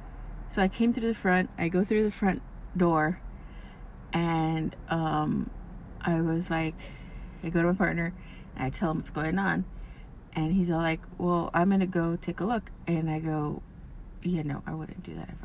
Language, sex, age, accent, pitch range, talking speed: English, female, 30-49, American, 105-175 Hz, 195 wpm